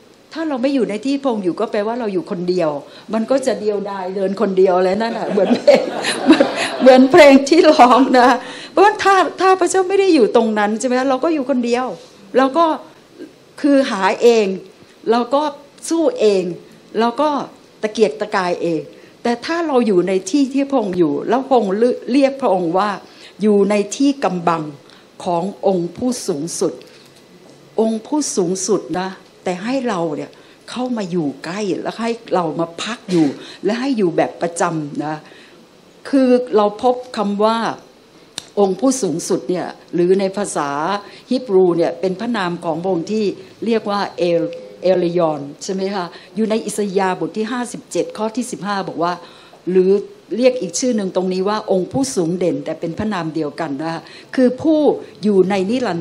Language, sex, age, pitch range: Thai, female, 60-79, 180-255 Hz